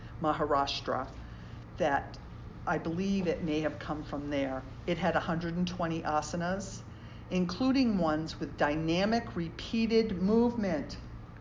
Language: English